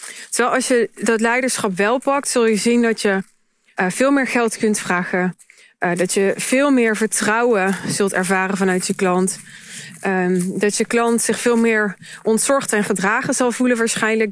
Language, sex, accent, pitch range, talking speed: Dutch, female, Dutch, 195-230 Hz, 165 wpm